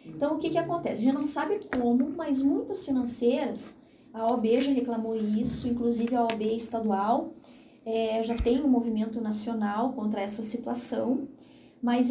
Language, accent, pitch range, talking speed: Portuguese, Brazilian, 235-290 Hz, 160 wpm